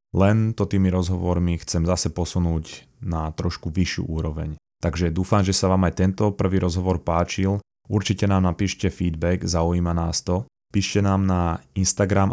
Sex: male